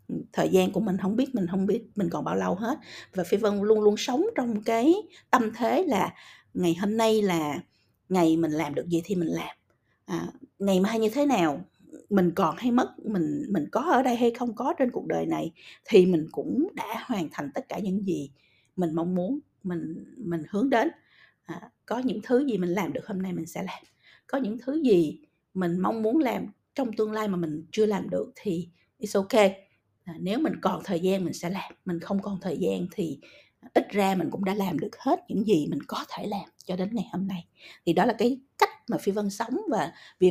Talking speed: 225 wpm